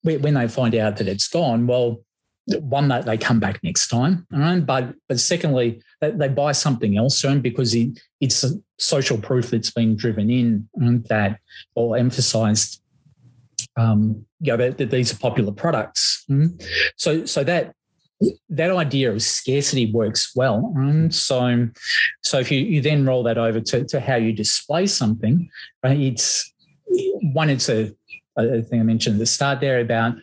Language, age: English, 30-49